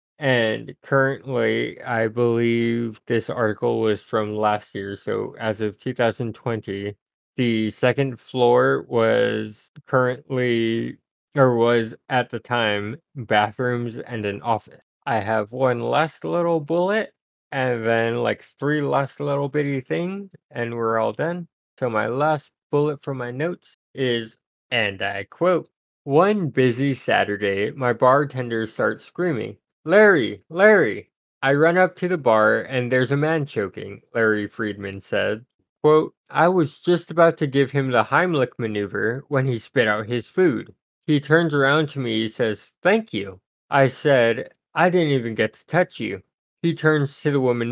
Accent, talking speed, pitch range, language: American, 150 wpm, 115-150 Hz, English